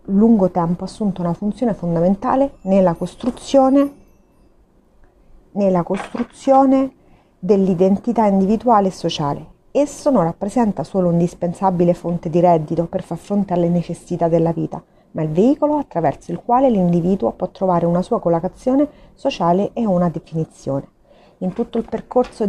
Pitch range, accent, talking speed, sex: 160-200 Hz, native, 135 wpm, female